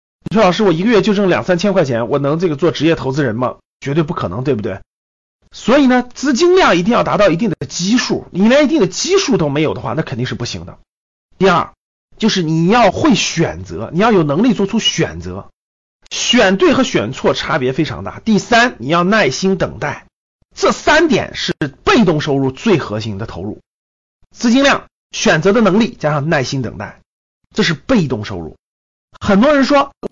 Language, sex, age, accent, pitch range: Chinese, male, 30-49, native, 135-205 Hz